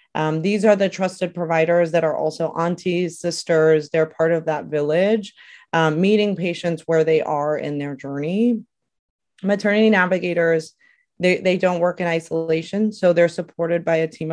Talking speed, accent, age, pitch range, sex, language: 165 wpm, American, 30-49, 160-185 Hz, female, English